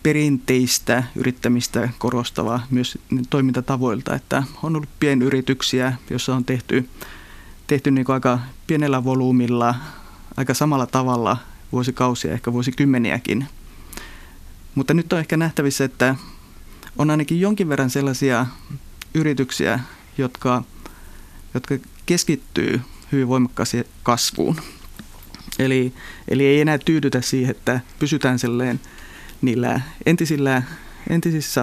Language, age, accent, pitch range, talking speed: Finnish, 30-49, native, 120-140 Hz, 100 wpm